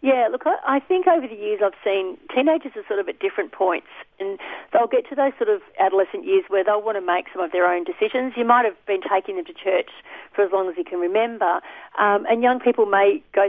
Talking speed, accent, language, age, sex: 250 wpm, Australian, English, 40-59, female